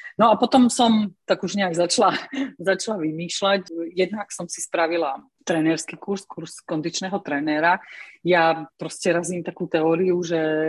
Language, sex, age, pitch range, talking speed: Slovak, female, 30-49, 155-190 Hz, 140 wpm